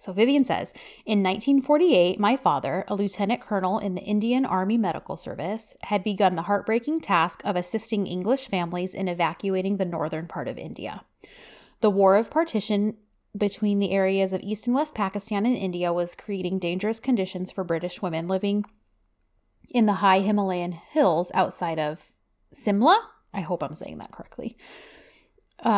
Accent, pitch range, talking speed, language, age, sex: American, 185-230 Hz, 160 wpm, English, 30-49, female